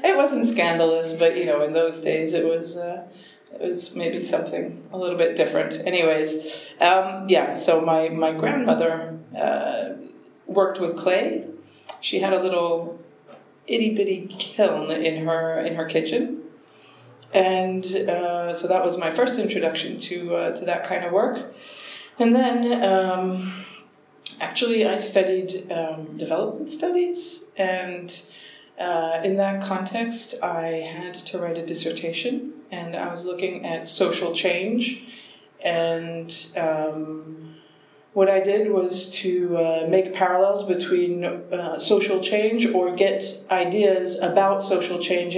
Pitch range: 165-195 Hz